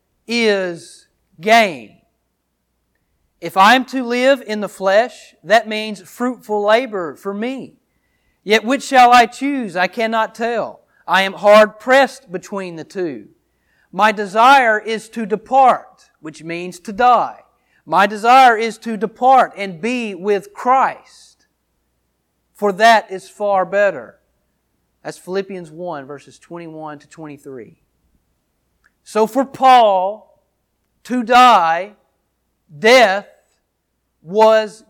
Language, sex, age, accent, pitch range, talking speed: English, male, 40-59, American, 170-225 Hz, 115 wpm